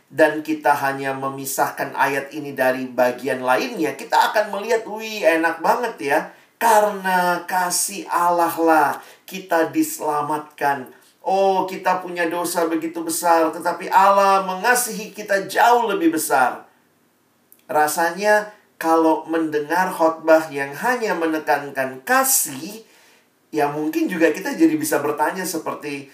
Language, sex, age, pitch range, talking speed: Indonesian, male, 50-69, 150-215 Hz, 115 wpm